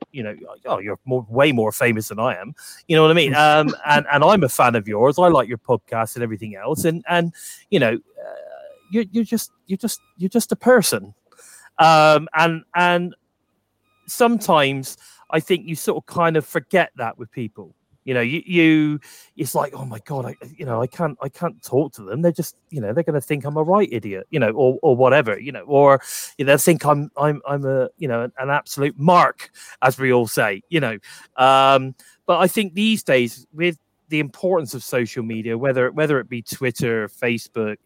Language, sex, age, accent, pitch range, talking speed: English, male, 30-49, British, 120-165 Hz, 210 wpm